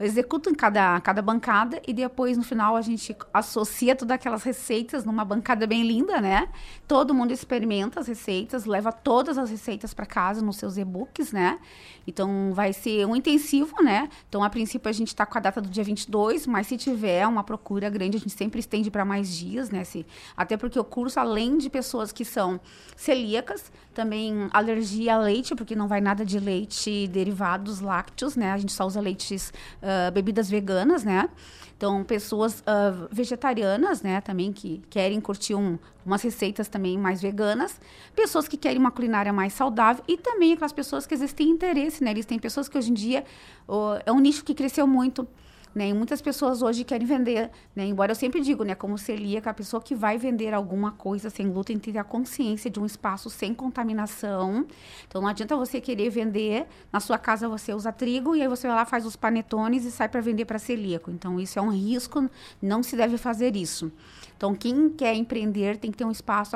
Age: 20-39